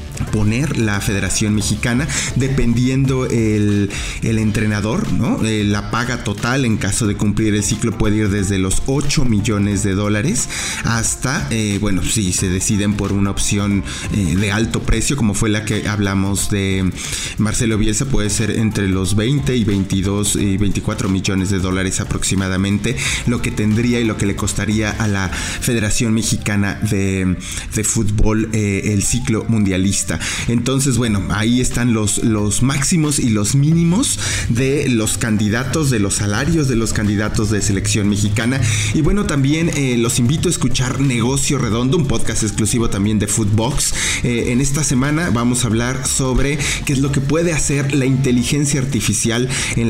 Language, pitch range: English, 100-125 Hz